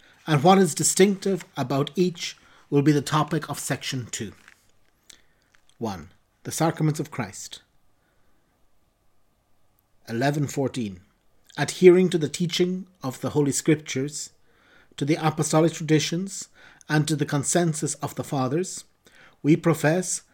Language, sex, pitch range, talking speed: English, male, 135-170 Hz, 120 wpm